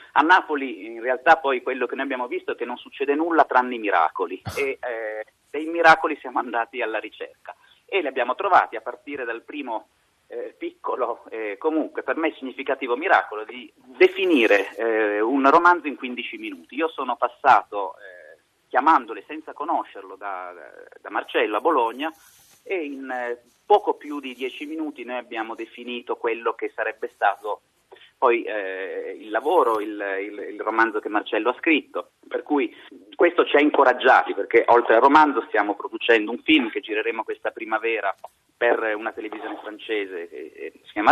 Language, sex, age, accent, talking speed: Italian, male, 30-49, native, 170 wpm